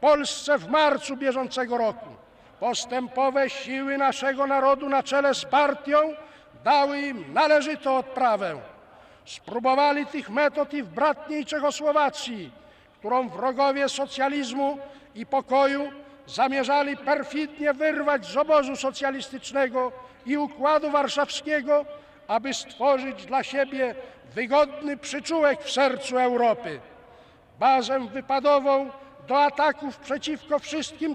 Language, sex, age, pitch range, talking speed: Polish, male, 50-69, 260-285 Hz, 100 wpm